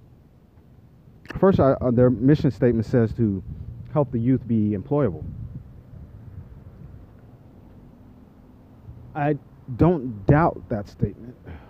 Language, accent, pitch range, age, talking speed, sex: English, American, 95-130 Hz, 30-49, 85 wpm, male